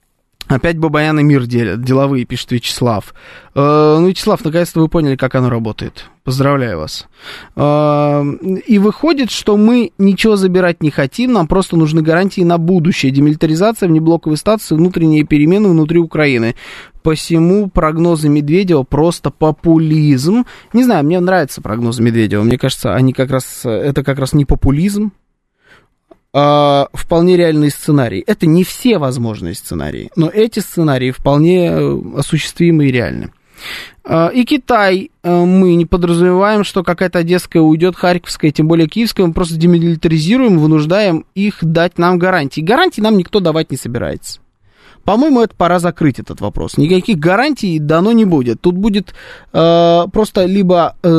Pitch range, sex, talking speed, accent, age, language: 145-190 Hz, male, 140 wpm, native, 20-39, Russian